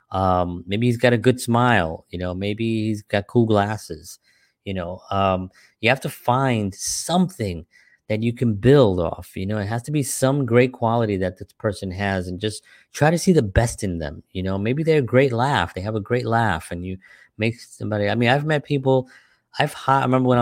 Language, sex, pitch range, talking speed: English, male, 95-120 Hz, 215 wpm